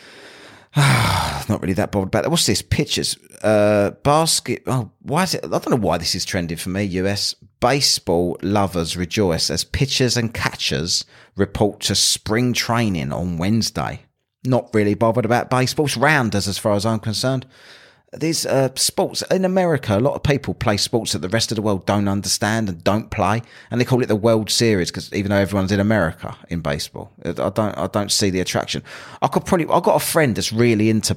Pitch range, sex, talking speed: 95-130 Hz, male, 200 wpm